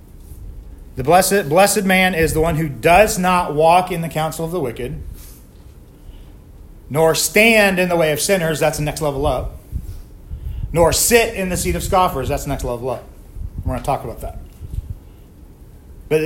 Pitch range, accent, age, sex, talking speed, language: 125-175 Hz, American, 40-59, male, 180 wpm, English